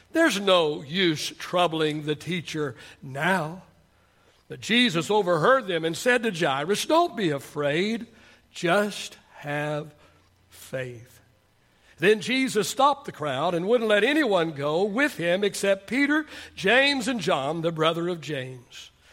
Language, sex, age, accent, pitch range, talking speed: English, male, 60-79, American, 155-235 Hz, 130 wpm